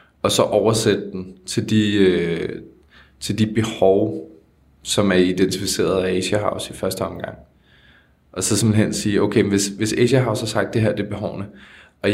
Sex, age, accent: male, 20-39, native